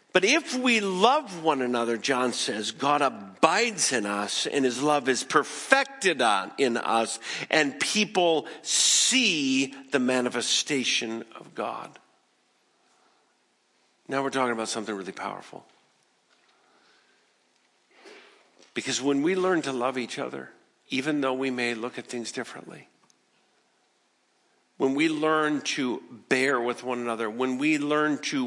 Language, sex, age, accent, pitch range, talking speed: English, male, 50-69, American, 115-145 Hz, 130 wpm